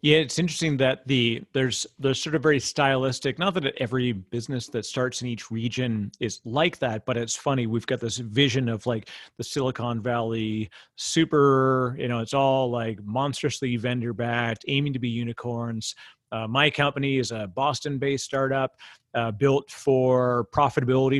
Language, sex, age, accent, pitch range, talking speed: English, male, 30-49, American, 120-145 Hz, 165 wpm